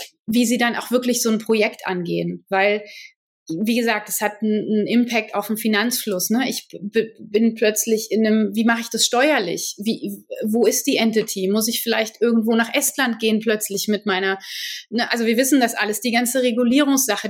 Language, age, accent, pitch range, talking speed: German, 30-49, German, 215-240 Hz, 185 wpm